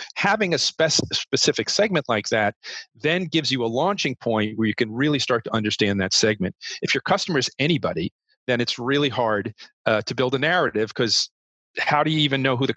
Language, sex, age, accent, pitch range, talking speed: English, male, 40-59, American, 110-135 Hz, 200 wpm